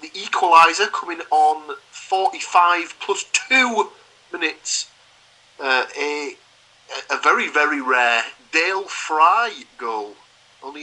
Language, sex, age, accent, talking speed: English, male, 30-49, British, 100 wpm